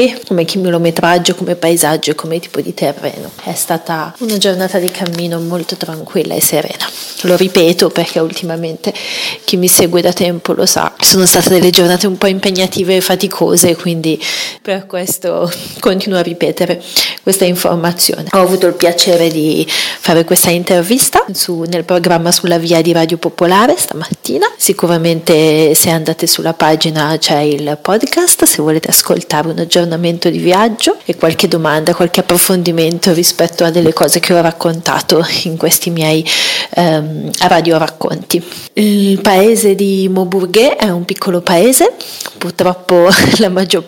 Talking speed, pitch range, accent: 145 wpm, 165-190 Hz, native